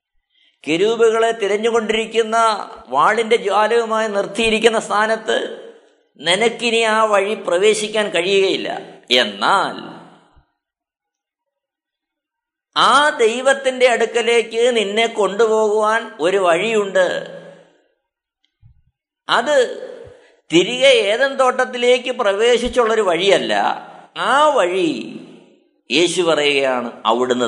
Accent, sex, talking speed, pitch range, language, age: native, male, 65 wpm, 210-300 Hz, Malayalam, 50-69